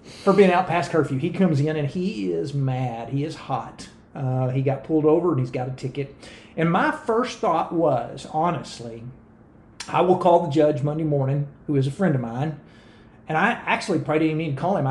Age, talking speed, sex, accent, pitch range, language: 40-59, 210 wpm, male, American, 130-160 Hz, English